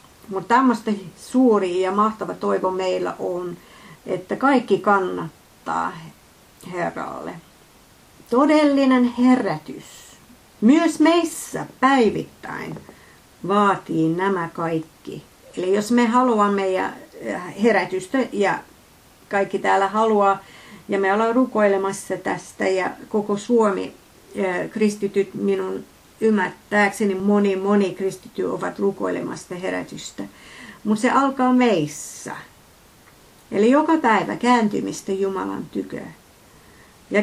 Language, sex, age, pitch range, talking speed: Finnish, female, 50-69, 185-230 Hz, 90 wpm